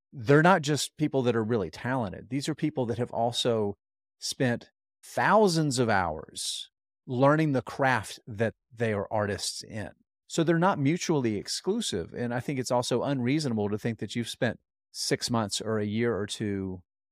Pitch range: 100-130 Hz